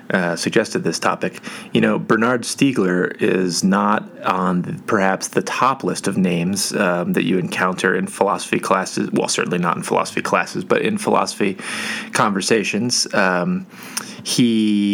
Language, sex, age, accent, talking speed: English, male, 30-49, American, 150 wpm